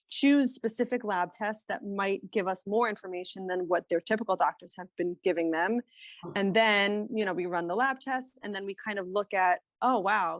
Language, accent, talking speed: English, American, 215 wpm